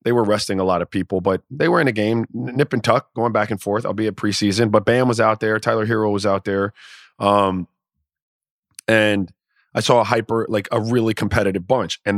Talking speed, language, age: 225 wpm, English, 30-49